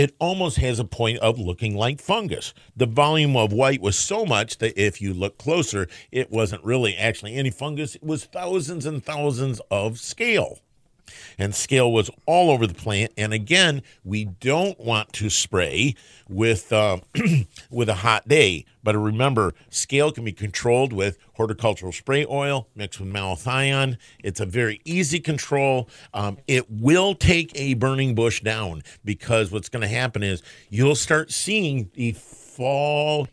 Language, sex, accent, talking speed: English, male, American, 165 wpm